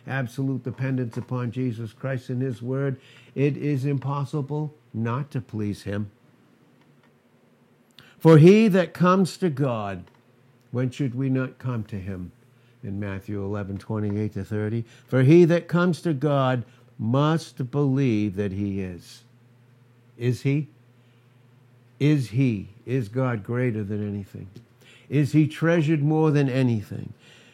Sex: male